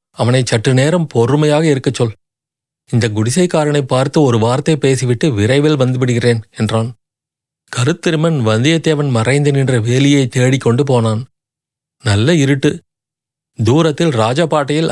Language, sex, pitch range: Tamil, male, 120-150 Hz